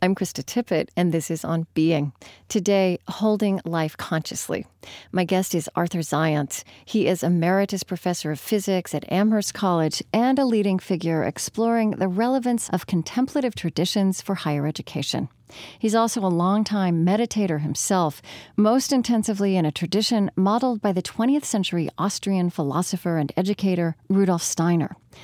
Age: 40-59